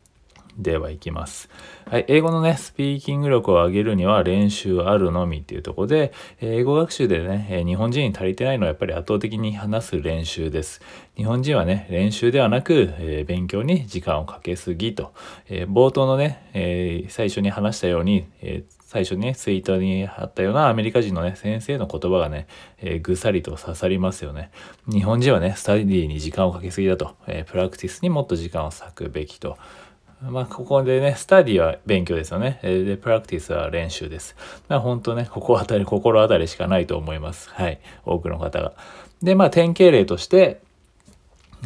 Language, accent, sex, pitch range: Japanese, native, male, 90-125 Hz